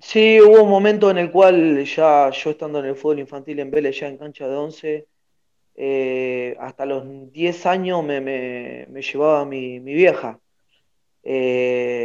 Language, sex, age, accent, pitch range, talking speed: Spanish, male, 20-39, Argentinian, 130-145 Hz, 170 wpm